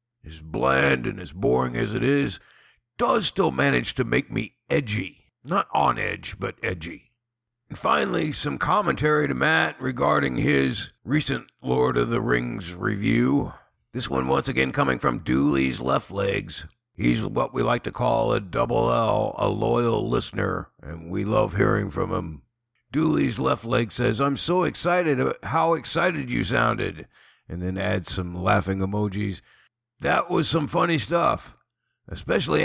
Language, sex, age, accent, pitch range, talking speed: English, male, 50-69, American, 95-140 Hz, 155 wpm